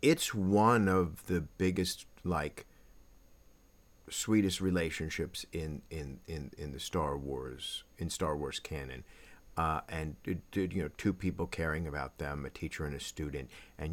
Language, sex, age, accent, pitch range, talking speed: English, male, 50-69, American, 75-95 Hz, 140 wpm